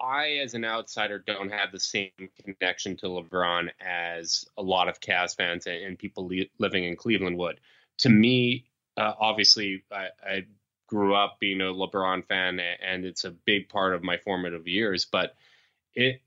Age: 20-39